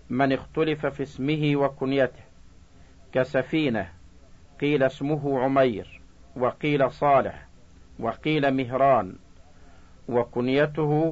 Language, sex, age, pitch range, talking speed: Arabic, male, 50-69, 90-145 Hz, 75 wpm